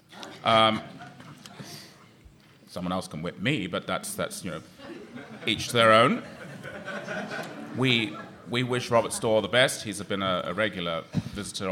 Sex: male